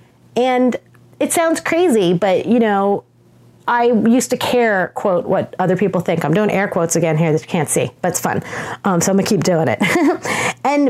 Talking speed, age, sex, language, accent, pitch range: 205 wpm, 30-49, female, English, American, 180-240 Hz